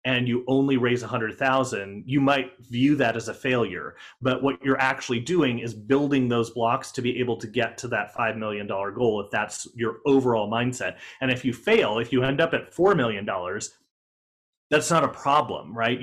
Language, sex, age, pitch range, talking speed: English, male, 30-49, 110-135 Hz, 200 wpm